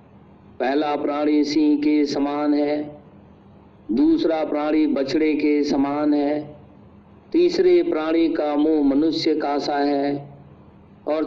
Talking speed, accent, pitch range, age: 110 wpm, native, 145-165 Hz, 50-69